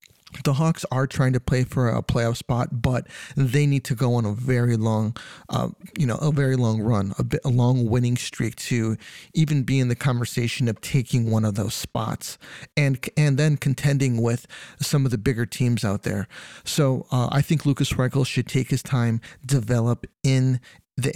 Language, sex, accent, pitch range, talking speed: English, male, American, 120-140 Hz, 195 wpm